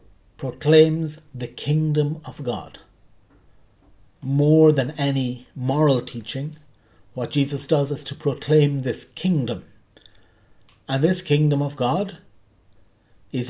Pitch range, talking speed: 115-145 Hz, 105 wpm